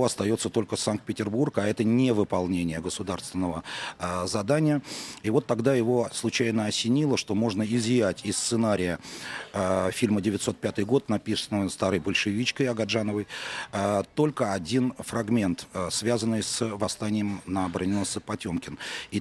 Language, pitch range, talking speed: Russian, 100-120 Hz, 130 wpm